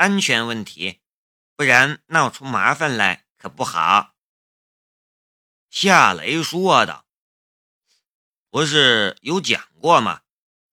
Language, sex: Chinese, male